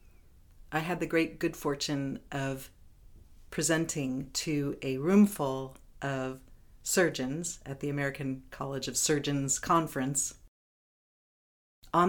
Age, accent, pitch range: 50-69, American, 110-155 Hz